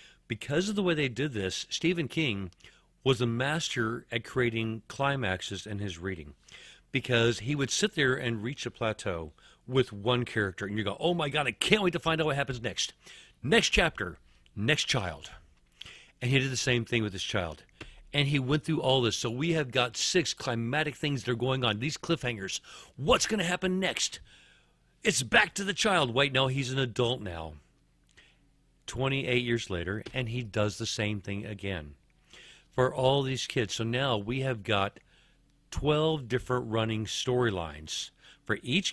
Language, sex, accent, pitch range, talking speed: English, male, American, 105-140 Hz, 180 wpm